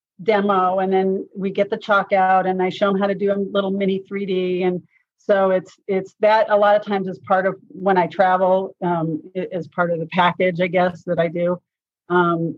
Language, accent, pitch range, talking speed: English, American, 180-215 Hz, 220 wpm